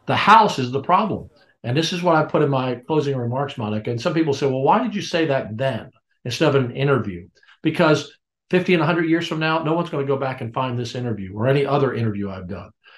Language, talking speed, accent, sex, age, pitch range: English, 245 wpm, American, male, 50-69, 125-160 Hz